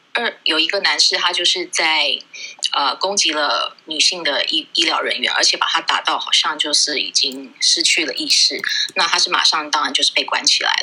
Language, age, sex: Chinese, 20-39, female